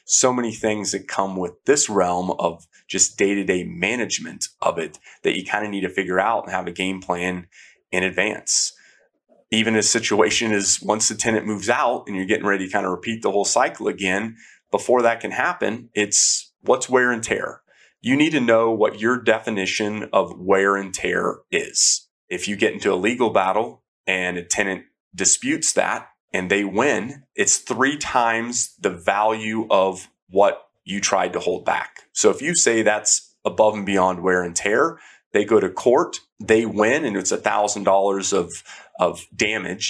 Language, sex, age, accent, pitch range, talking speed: English, male, 30-49, American, 95-115 Hz, 180 wpm